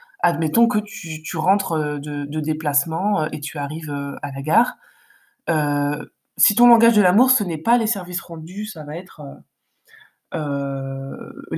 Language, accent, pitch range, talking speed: French, French, 155-205 Hz, 160 wpm